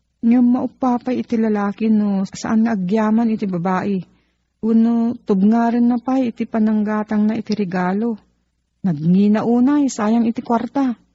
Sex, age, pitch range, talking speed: female, 40-59, 160-215 Hz, 130 wpm